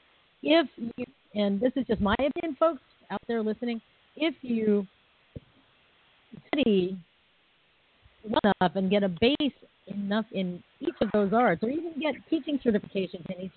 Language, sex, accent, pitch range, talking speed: English, female, American, 180-245 Hz, 145 wpm